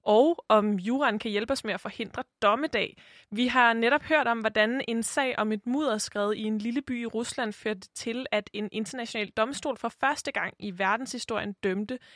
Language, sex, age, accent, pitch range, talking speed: Danish, female, 20-39, native, 205-250 Hz, 195 wpm